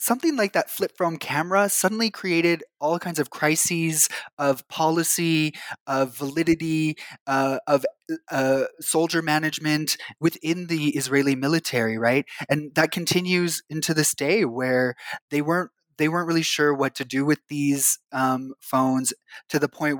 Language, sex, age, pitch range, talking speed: English, male, 20-39, 130-160 Hz, 145 wpm